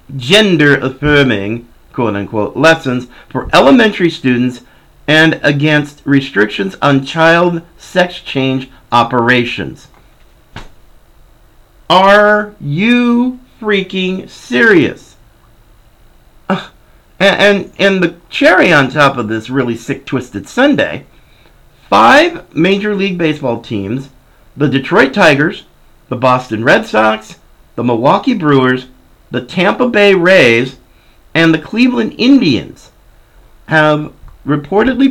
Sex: male